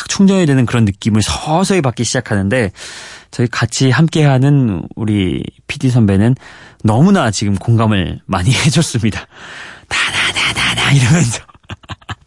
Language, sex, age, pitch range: Korean, male, 30-49, 110-165 Hz